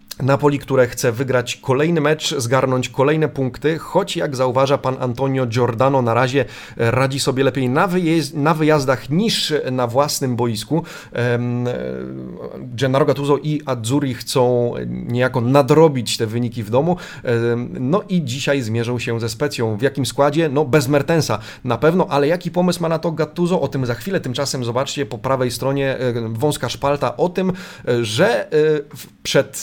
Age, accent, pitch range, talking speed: 30-49, native, 120-150 Hz, 150 wpm